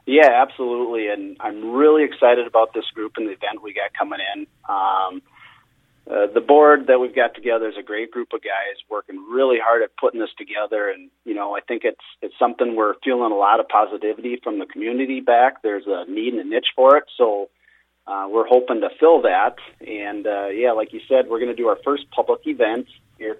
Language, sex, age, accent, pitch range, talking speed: English, male, 40-59, American, 105-135 Hz, 220 wpm